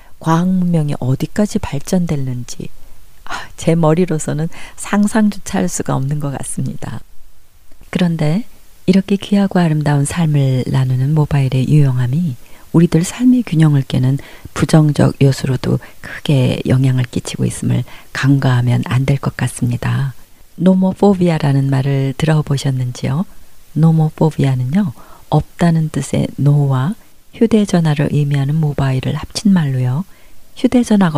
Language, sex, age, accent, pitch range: Korean, female, 40-59, native, 135-175 Hz